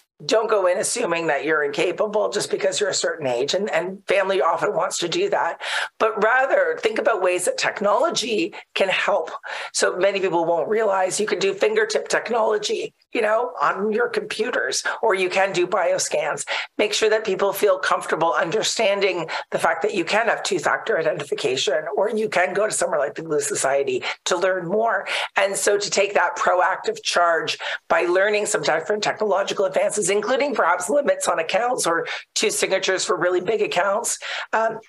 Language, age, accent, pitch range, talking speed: English, 50-69, American, 185-285 Hz, 180 wpm